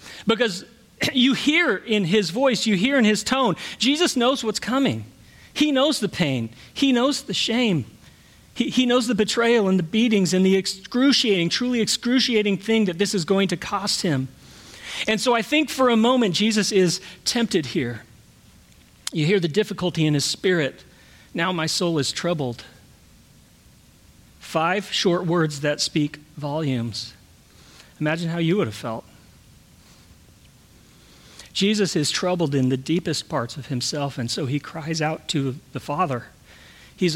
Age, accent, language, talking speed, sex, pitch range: 40-59, American, English, 155 wpm, male, 155-240 Hz